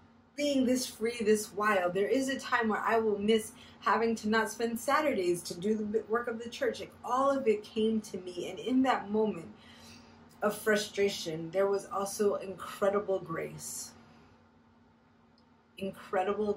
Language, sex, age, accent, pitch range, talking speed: English, female, 30-49, American, 170-215 Hz, 155 wpm